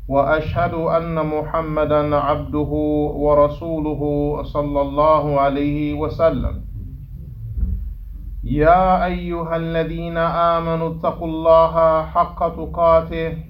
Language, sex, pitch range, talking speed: English, male, 145-170 Hz, 75 wpm